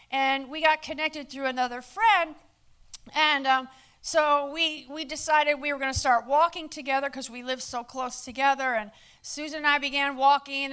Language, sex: English, female